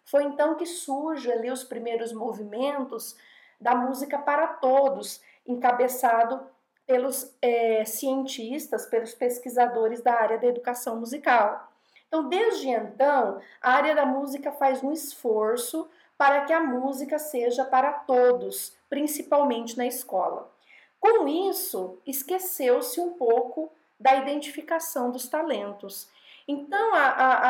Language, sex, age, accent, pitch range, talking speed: Portuguese, female, 40-59, Brazilian, 235-295 Hz, 110 wpm